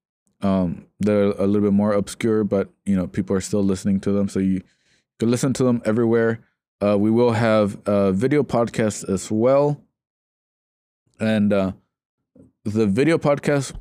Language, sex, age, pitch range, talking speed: English, male, 20-39, 100-115 Hz, 165 wpm